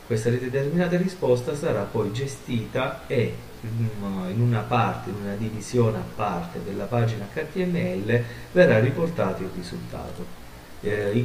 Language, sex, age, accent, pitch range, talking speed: Italian, male, 40-59, native, 95-125 Hz, 125 wpm